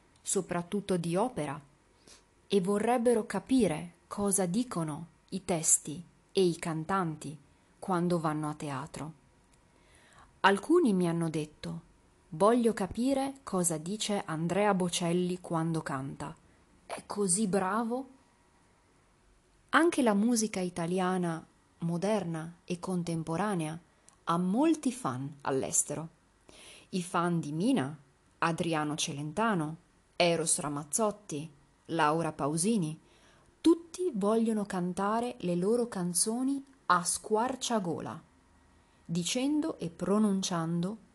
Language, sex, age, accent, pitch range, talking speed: Italian, female, 30-49, native, 160-215 Hz, 95 wpm